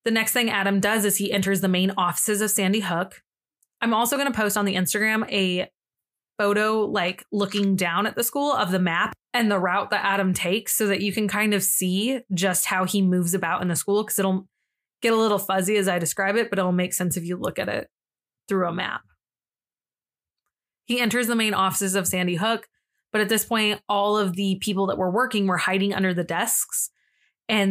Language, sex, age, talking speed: English, female, 20-39, 220 wpm